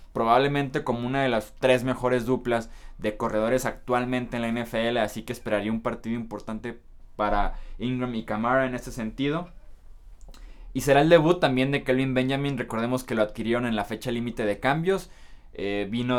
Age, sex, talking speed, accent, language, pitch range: 20-39, male, 175 wpm, Mexican, Spanish, 105-125 Hz